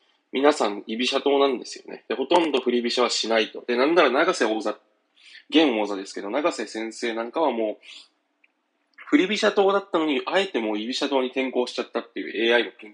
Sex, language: male, Japanese